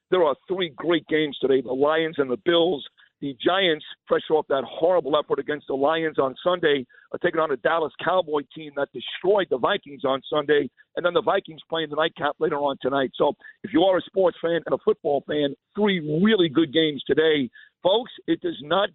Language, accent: English, American